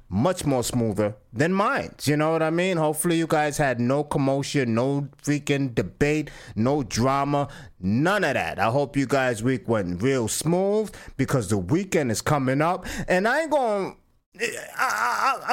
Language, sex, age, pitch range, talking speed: English, male, 30-49, 105-165 Hz, 160 wpm